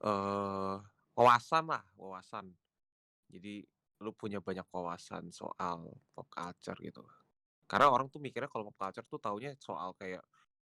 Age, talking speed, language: 20-39, 135 wpm, Indonesian